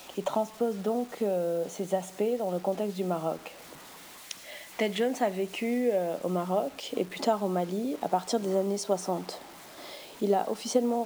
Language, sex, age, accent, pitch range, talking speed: English, female, 30-49, French, 185-220 Hz, 170 wpm